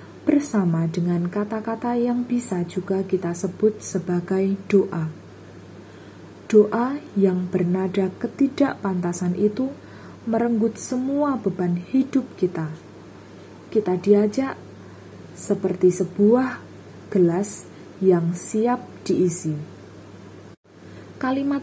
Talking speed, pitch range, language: 80 wpm, 165-220 Hz, Indonesian